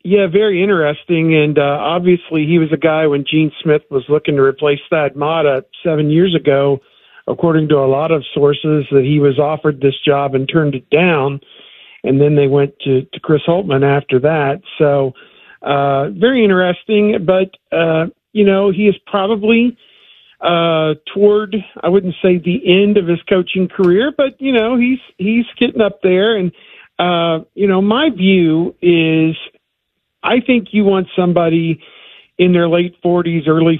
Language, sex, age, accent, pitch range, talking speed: English, male, 50-69, American, 150-185 Hz, 170 wpm